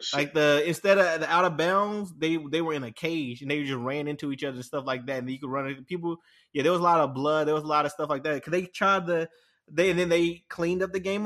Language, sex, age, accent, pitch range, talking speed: English, male, 20-39, American, 150-185 Hz, 315 wpm